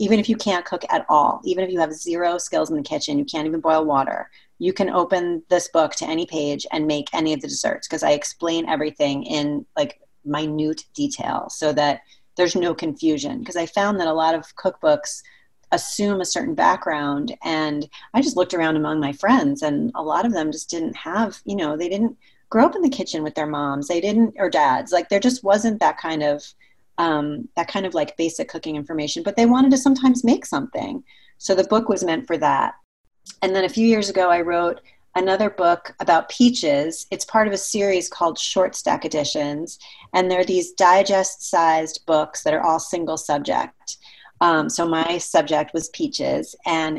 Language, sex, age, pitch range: English, female, 30-49, 155-220 Hz